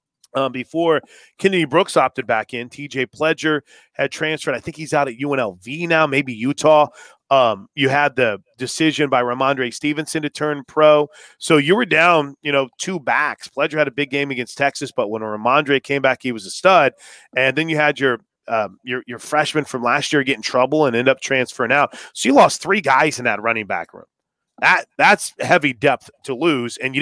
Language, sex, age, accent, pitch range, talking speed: English, male, 30-49, American, 130-155 Hz, 205 wpm